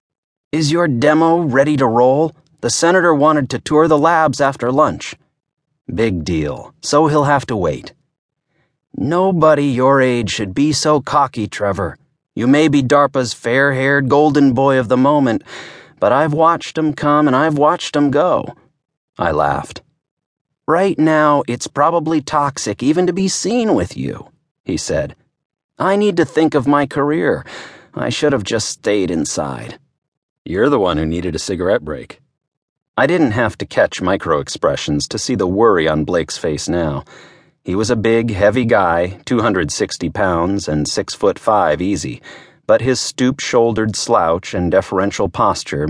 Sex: male